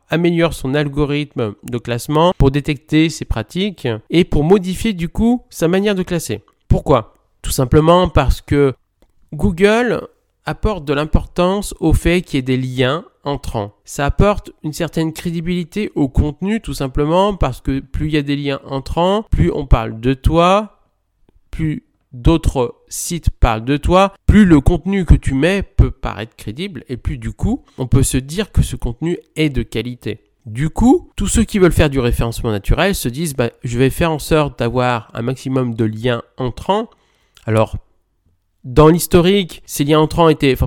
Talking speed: 175 wpm